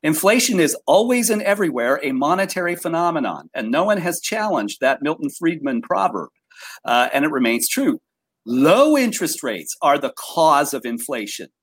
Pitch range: 160-255 Hz